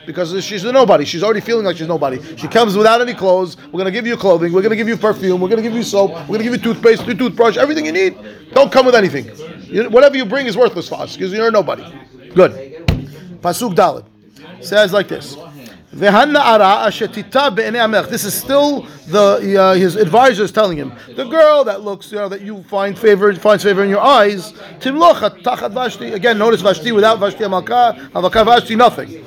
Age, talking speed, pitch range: 30-49, 200 wpm, 190-255 Hz